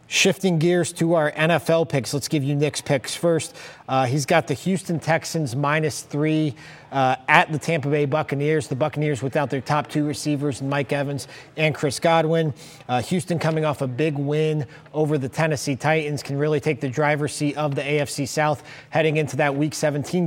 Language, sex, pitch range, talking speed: English, male, 140-160 Hz, 190 wpm